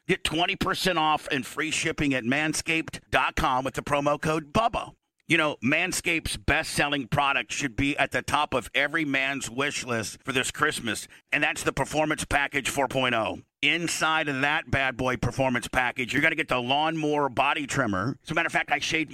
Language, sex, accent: English, male, American